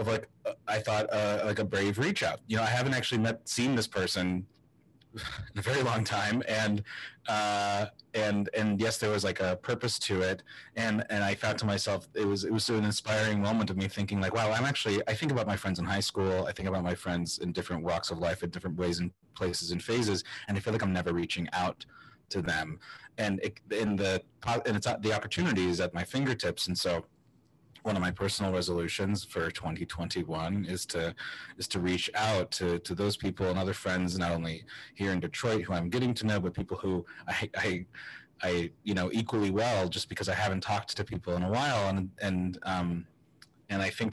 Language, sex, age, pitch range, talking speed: English, male, 30-49, 90-105 Hz, 215 wpm